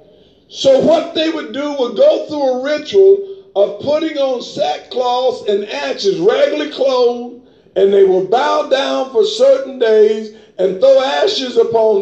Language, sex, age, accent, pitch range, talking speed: English, male, 50-69, American, 260-395 Hz, 150 wpm